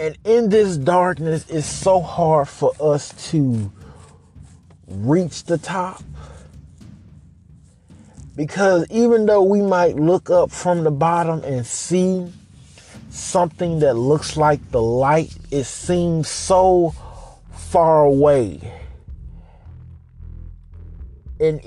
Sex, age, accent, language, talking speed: male, 30-49, American, English, 100 wpm